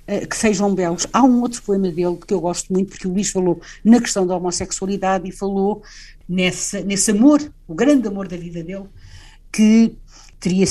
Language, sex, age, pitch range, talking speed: Portuguese, female, 60-79, 185-230 Hz, 185 wpm